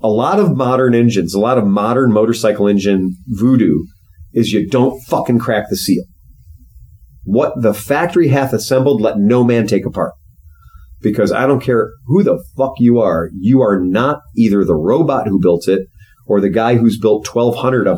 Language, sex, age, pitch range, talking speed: English, male, 40-59, 90-130 Hz, 180 wpm